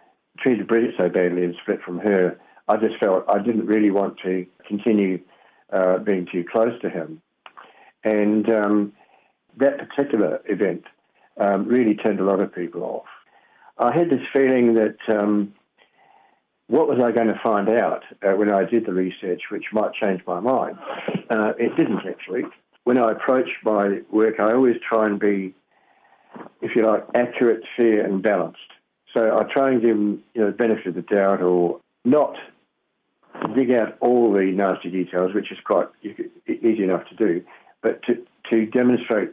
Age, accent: 60-79, British